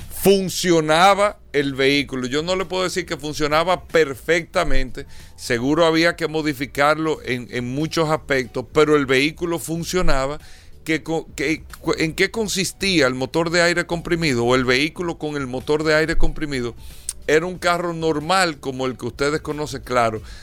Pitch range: 130-165 Hz